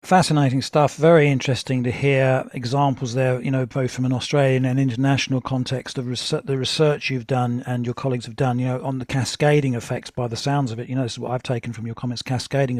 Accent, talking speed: British, 230 wpm